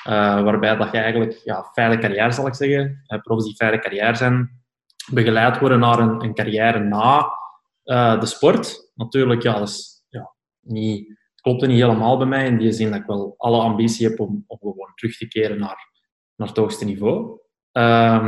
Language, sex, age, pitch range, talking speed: Dutch, male, 20-39, 110-125 Hz, 195 wpm